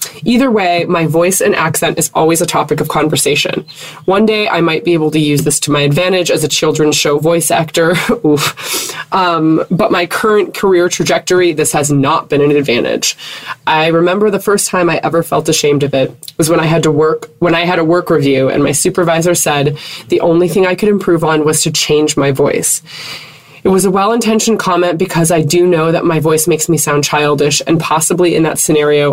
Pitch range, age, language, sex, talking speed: 150-170 Hz, 20-39, English, female, 215 wpm